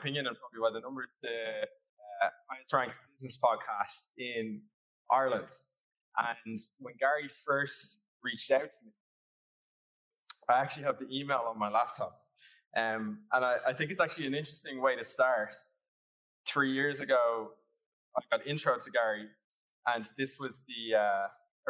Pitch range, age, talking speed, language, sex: 115-155 Hz, 20-39, 145 wpm, English, male